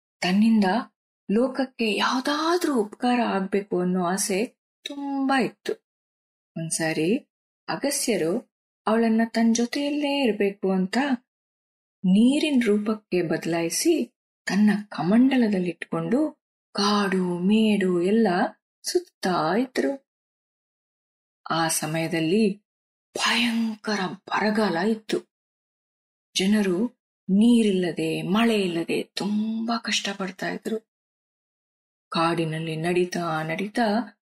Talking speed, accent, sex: 70 wpm, native, female